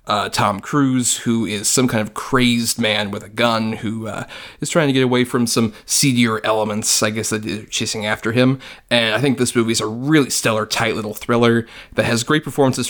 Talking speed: 220 wpm